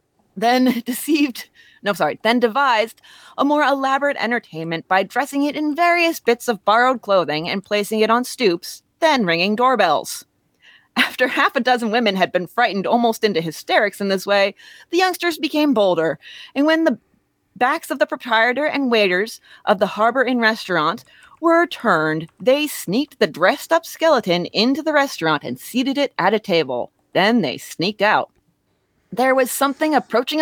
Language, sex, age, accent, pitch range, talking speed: English, female, 30-49, American, 185-280 Hz, 165 wpm